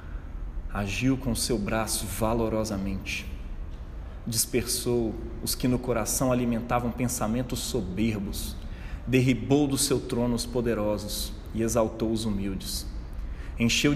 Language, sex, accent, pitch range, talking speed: Portuguese, male, Brazilian, 85-120 Hz, 110 wpm